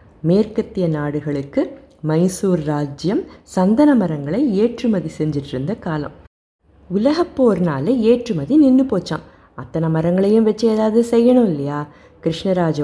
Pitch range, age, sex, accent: 155-235 Hz, 20-39, female, native